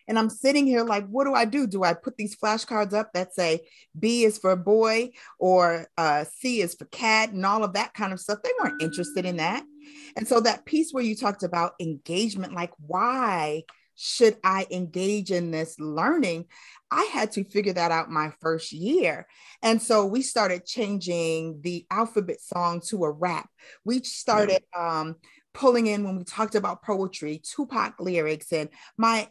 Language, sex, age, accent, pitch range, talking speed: English, female, 30-49, American, 180-230 Hz, 185 wpm